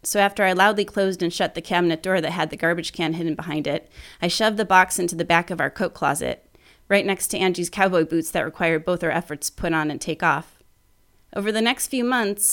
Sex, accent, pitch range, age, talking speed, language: female, American, 165-195 Hz, 30-49, 245 wpm, English